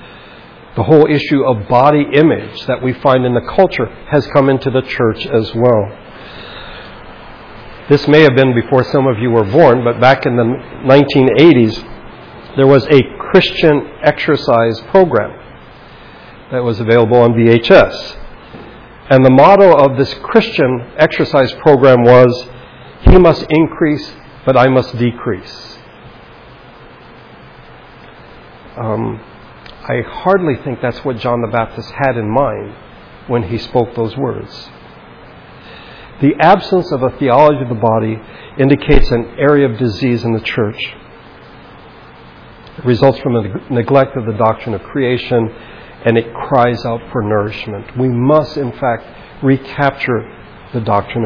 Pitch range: 115-145 Hz